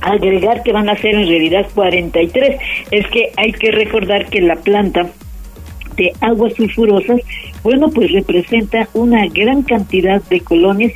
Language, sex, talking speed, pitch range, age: Spanish, female, 150 wpm, 175-220 Hz, 50-69